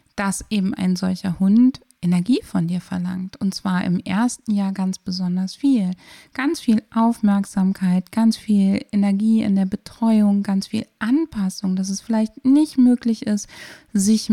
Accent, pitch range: German, 195-230 Hz